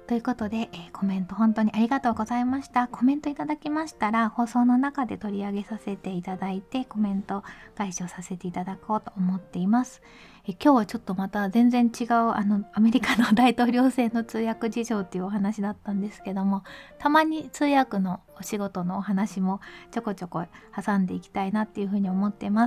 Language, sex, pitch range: Japanese, female, 195-240 Hz